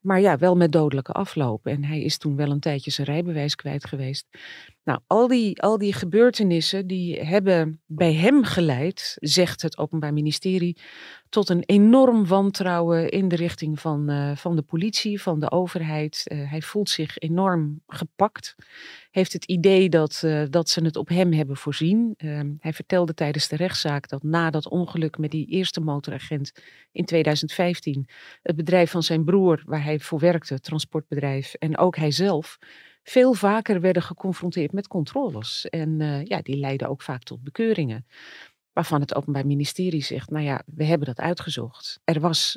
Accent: Dutch